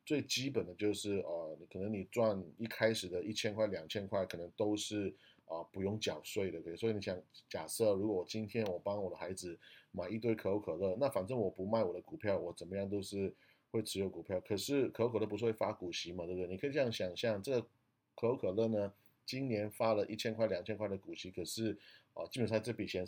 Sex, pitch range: male, 95-115 Hz